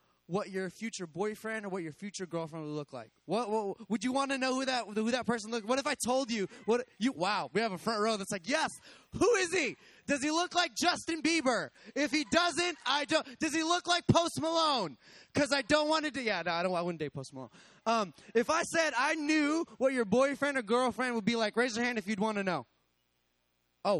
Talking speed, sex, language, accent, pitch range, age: 250 wpm, male, English, American, 185-265 Hz, 20-39